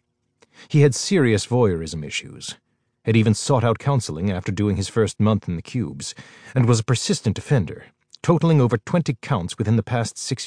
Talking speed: 180 wpm